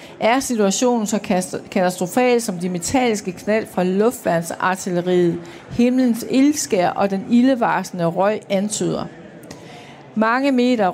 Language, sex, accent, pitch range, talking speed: Danish, female, native, 185-245 Hz, 105 wpm